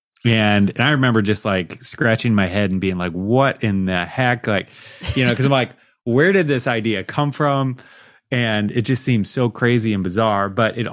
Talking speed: 210 wpm